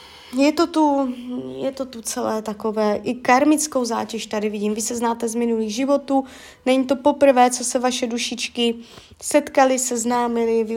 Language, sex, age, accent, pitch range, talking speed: Czech, female, 20-39, native, 220-260 Hz, 160 wpm